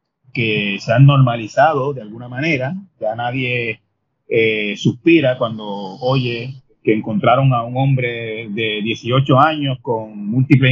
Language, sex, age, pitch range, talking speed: Spanish, male, 30-49, 120-145 Hz, 130 wpm